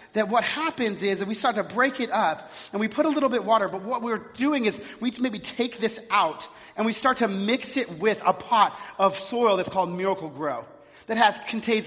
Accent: American